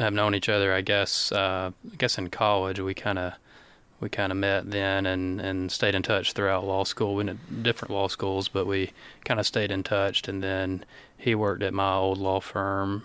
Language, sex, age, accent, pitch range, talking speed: English, male, 20-39, American, 95-105 Hz, 220 wpm